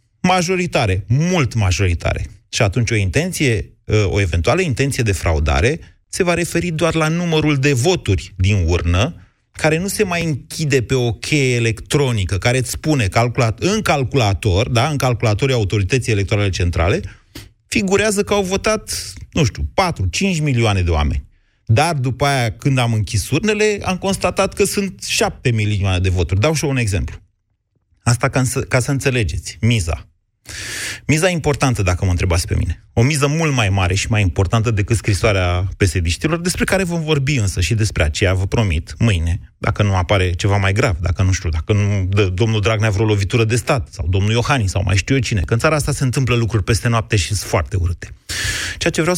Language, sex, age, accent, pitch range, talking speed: Romanian, male, 30-49, native, 100-145 Hz, 185 wpm